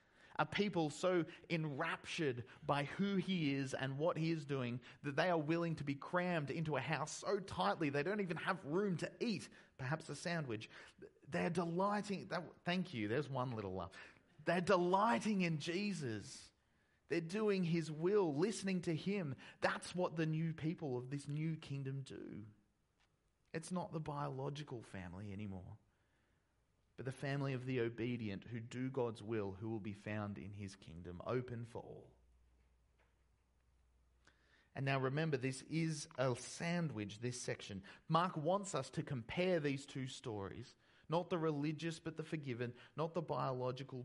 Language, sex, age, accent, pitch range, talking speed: English, male, 30-49, Australian, 115-165 Hz, 160 wpm